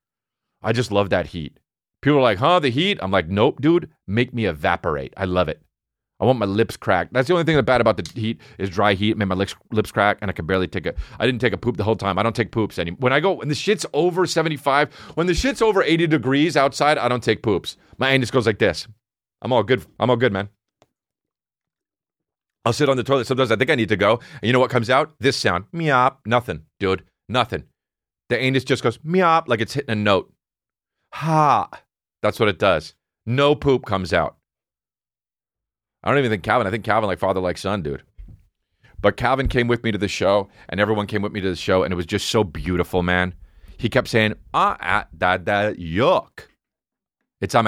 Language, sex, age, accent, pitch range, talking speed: English, male, 30-49, American, 95-125 Hz, 225 wpm